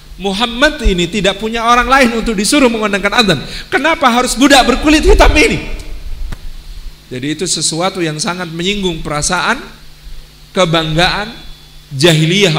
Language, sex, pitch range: Indonesian, male, 145-195 Hz